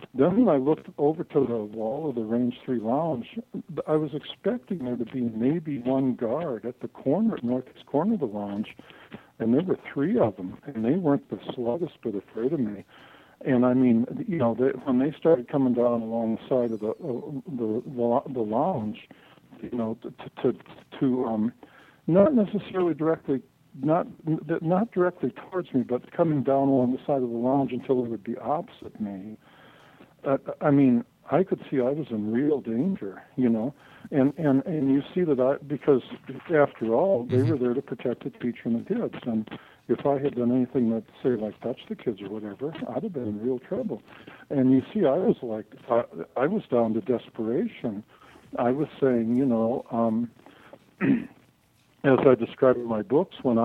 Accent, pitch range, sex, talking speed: American, 120-150 Hz, male, 195 wpm